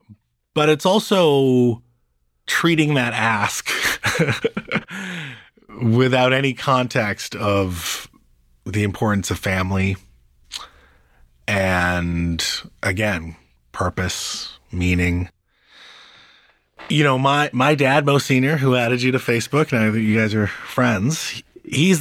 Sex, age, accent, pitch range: male, 30-49, American, 90-130 Hz